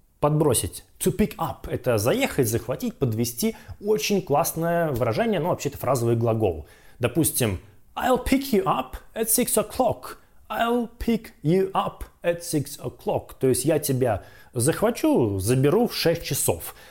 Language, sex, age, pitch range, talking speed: Russian, male, 20-39, 120-170 Hz, 140 wpm